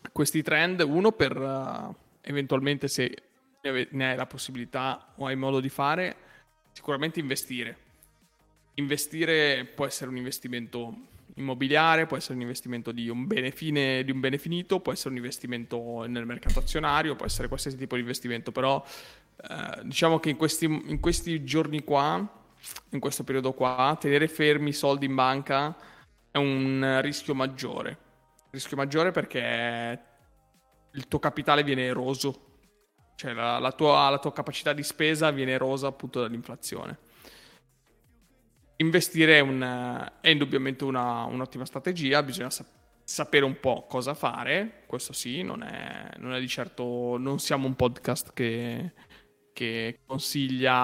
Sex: male